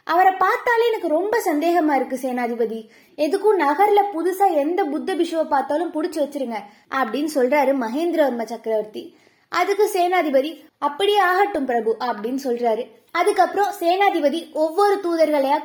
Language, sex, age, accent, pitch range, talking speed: Tamil, female, 20-39, native, 275-360 Hz, 120 wpm